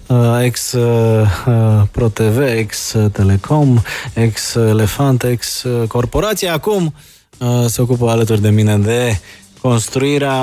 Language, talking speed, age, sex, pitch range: Romanian, 130 wpm, 20-39, male, 110-130 Hz